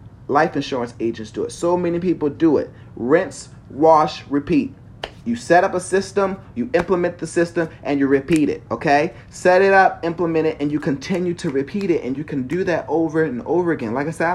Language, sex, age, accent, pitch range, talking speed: English, male, 30-49, American, 130-170 Hz, 210 wpm